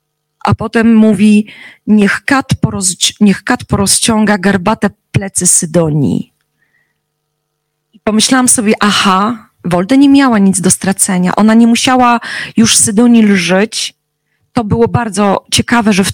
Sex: female